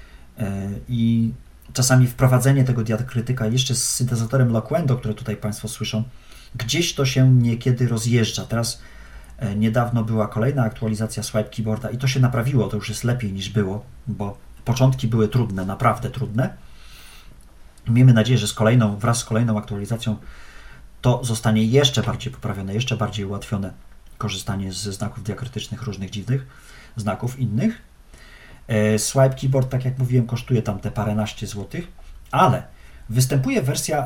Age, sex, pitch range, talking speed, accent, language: 40-59, male, 105-125 Hz, 140 wpm, native, Polish